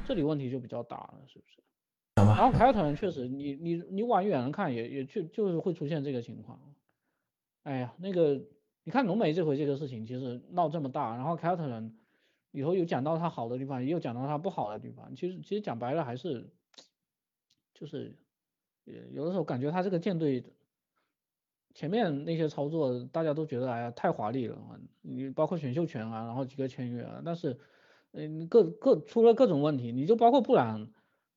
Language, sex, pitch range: Chinese, male, 130-170 Hz